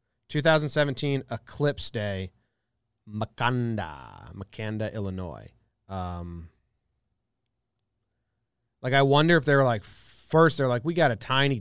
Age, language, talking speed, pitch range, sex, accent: 30-49, English, 105 wpm, 105-130 Hz, male, American